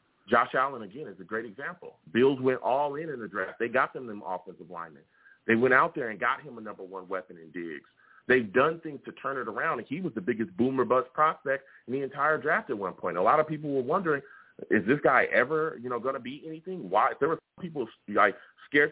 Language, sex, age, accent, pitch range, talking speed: English, male, 30-49, American, 130-160 Hz, 245 wpm